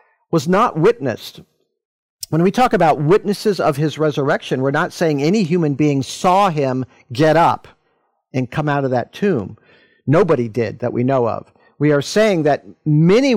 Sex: male